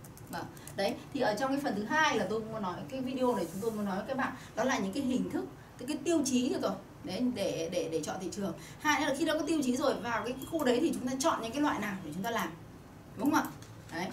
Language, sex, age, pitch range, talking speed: Vietnamese, female, 20-39, 210-275 Hz, 295 wpm